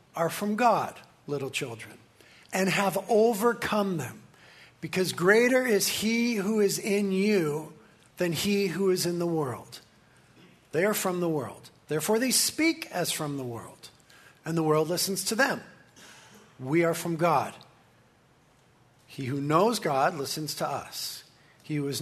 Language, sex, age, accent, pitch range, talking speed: English, male, 50-69, American, 150-200 Hz, 155 wpm